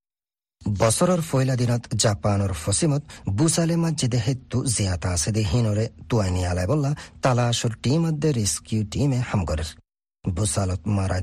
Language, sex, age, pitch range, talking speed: Bengali, male, 40-59, 95-130 Hz, 110 wpm